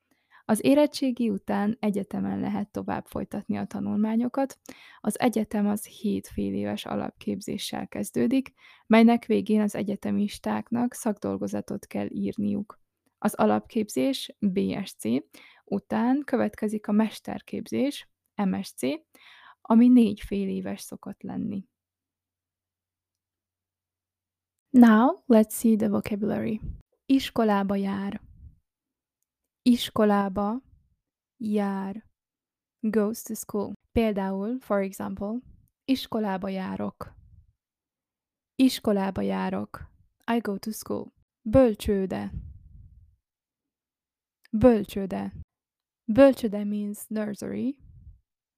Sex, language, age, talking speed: female, Hungarian, 20-39, 80 wpm